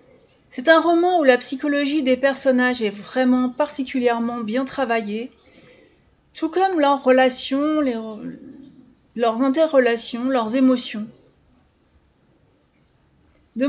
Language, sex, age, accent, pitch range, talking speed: French, female, 40-59, French, 210-270 Hz, 95 wpm